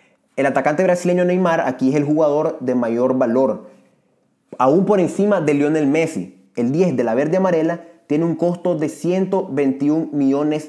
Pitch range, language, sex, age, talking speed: 130-180 Hz, Spanish, male, 30-49, 165 wpm